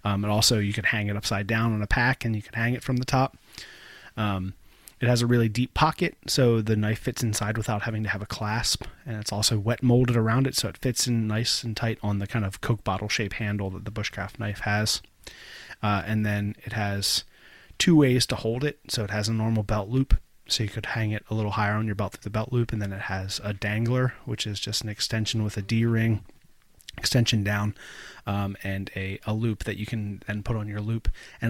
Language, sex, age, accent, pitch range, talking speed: English, male, 30-49, American, 105-120 Hz, 240 wpm